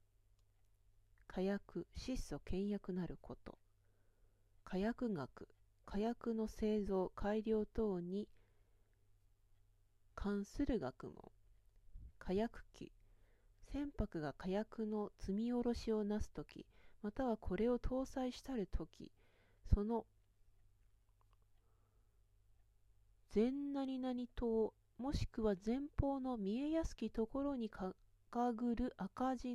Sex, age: female, 40-59